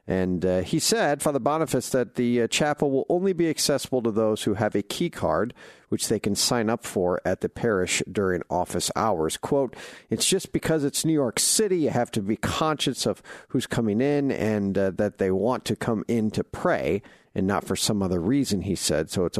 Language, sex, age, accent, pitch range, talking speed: English, male, 50-69, American, 90-130 Hz, 215 wpm